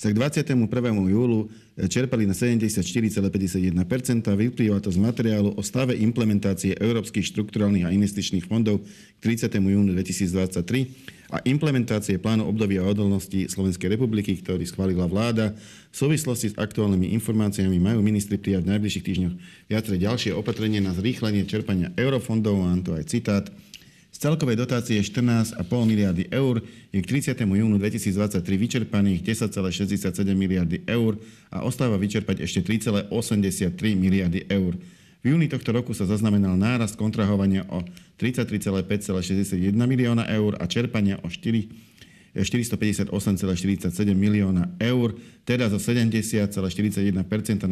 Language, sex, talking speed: Slovak, male, 125 wpm